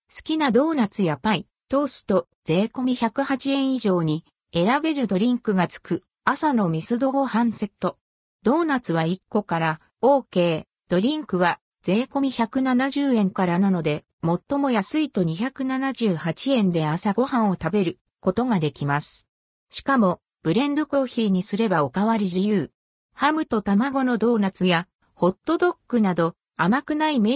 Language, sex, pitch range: Japanese, female, 175-255 Hz